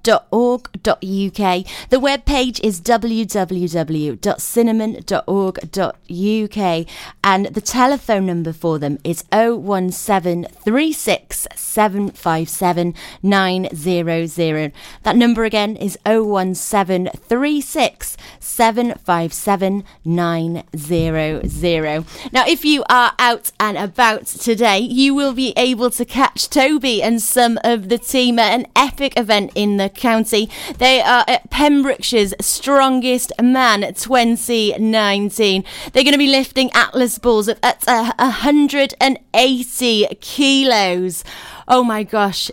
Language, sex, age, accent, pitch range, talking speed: English, female, 30-49, British, 195-250 Hz, 115 wpm